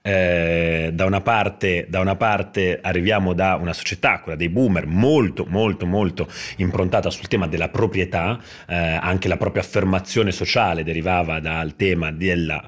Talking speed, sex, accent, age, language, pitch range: 150 wpm, male, native, 30-49, Italian, 85-100 Hz